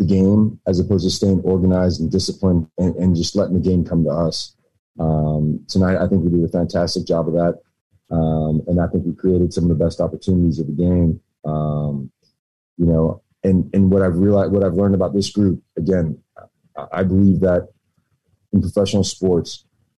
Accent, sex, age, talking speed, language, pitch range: American, male, 30-49, 190 wpm, English, 85-95 Hz